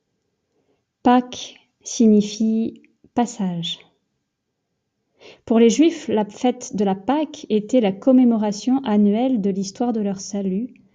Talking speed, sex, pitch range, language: 110 wpm, female, 200-235 Hz, French